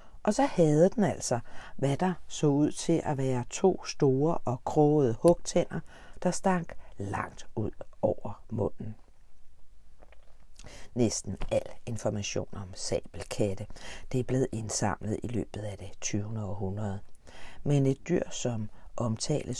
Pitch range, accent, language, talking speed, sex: 100-140 Hz, native, Danish, 130 wpm, female